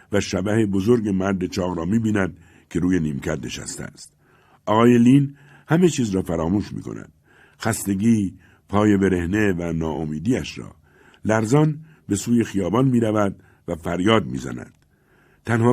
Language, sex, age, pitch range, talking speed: Persian, male, 60-79, 90-120 Hz, 130 wpm